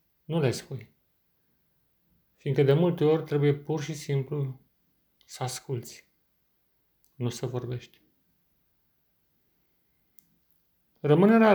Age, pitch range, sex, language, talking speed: 40-59, 130-155 Hz, male, Romanian, 90 wpm